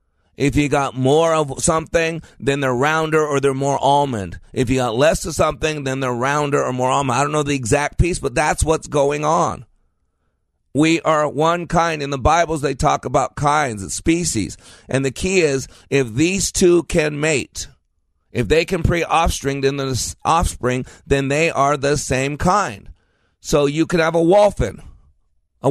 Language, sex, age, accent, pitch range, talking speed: English, male, 30-49, American, 120-160 Hz, 185 wpm